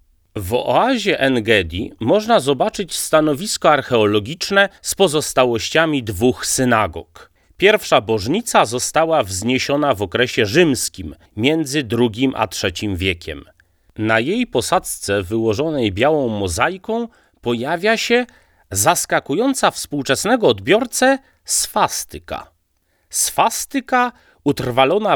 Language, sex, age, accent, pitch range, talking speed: Polish, male, 30-49, native, 110-185 Hz, 85 wpm